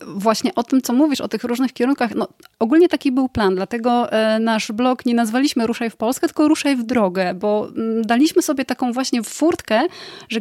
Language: Polish